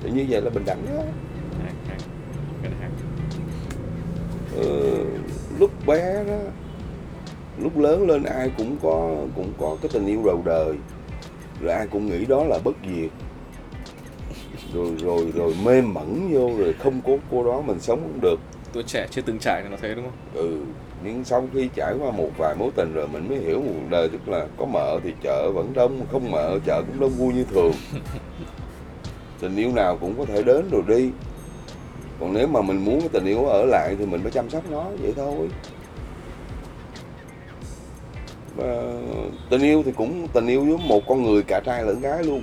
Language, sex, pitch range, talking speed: Vietnamese, male, 100-145 Hz, 185 wpm